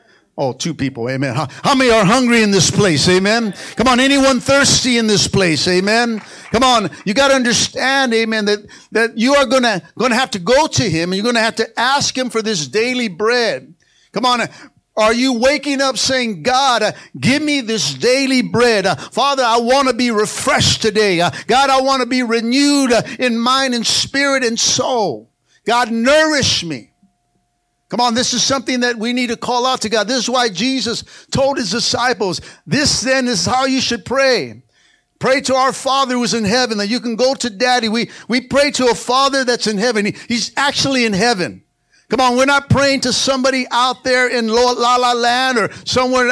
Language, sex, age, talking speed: English, male, 50-69, 205 wpm